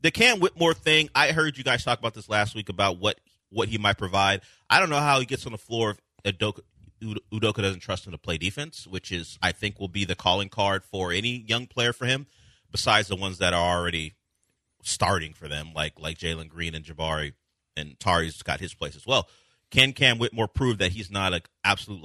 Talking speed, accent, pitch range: 225 wpm, American, 90-120 Hz